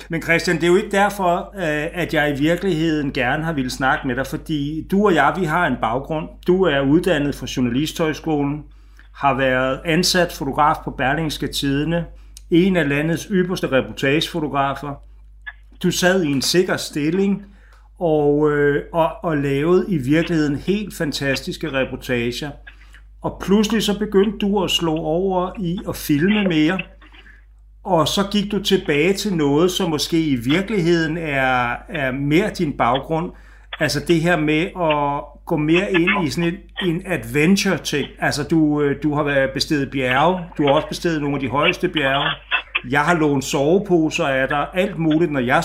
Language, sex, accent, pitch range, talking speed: Danish, male, native, 145-180 Hz, 160 wpm